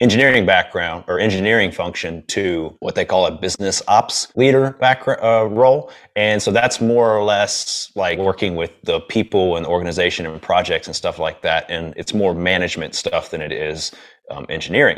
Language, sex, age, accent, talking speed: English, male, 30-49, American, 185 wpm